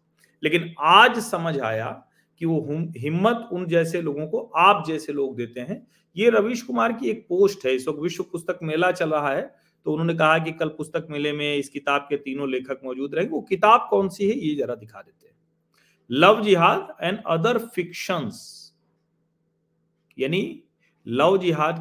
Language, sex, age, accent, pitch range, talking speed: Hindi, male, 40-59, native, 135-180 Hz, 170 wpm